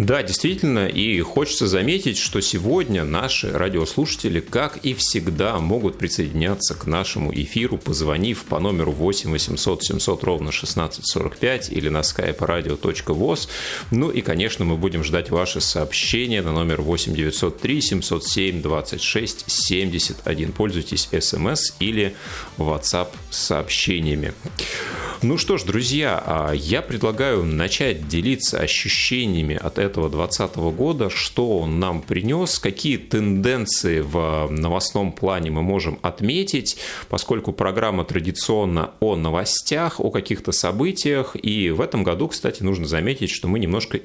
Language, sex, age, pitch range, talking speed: Russian, male, 30-49, 80-110 Hz, 125 wpm